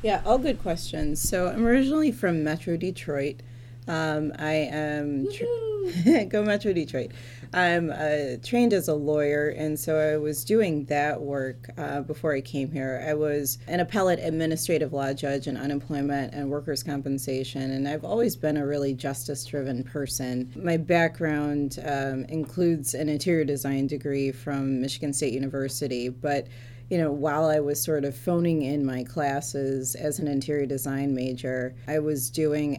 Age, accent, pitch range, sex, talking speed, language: 30-49, American, 130-155 Hz, female, 160 wpm, English